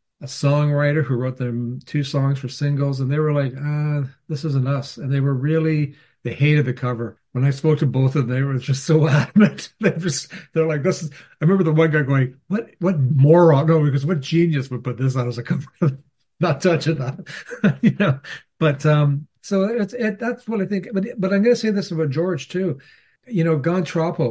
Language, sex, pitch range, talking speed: English, male, 130-165 Hz, 220 wpm